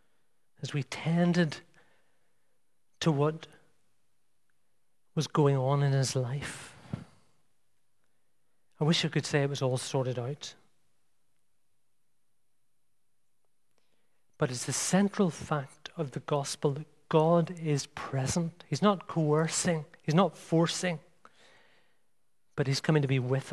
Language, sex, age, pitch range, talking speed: English, male, 40-59, 130-155 Hz, 115 wpm